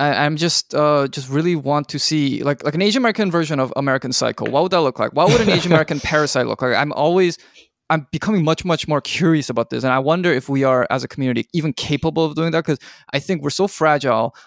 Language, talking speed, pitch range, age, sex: English, 250 wpm, 135-165 Hz, 20-39, male